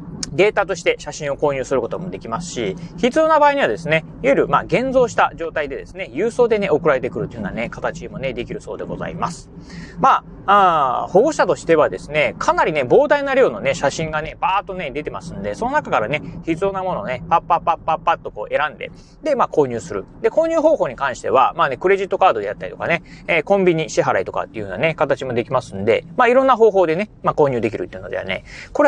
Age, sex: 30-49, male